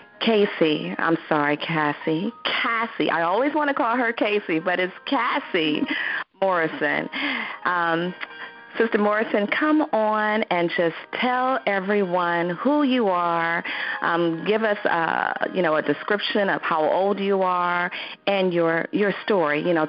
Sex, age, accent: female, 40-59, American